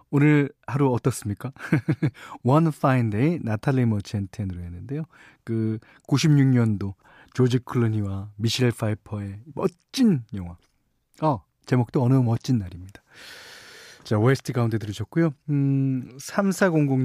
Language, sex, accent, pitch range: Korean, male, native, 120-175 Hz